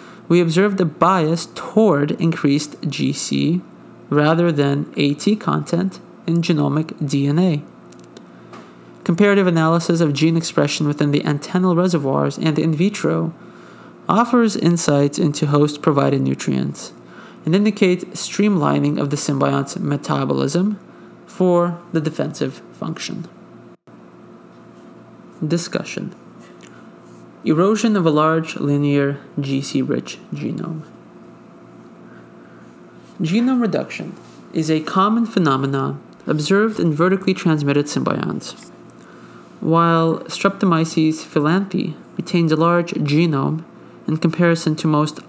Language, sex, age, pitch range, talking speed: English, male, 30-49, 145-175 Hz, 95 wpm